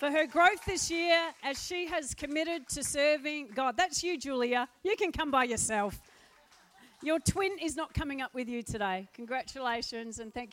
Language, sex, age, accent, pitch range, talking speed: English, female, 40-59, Australian, 220-315 Hz, 180 wpm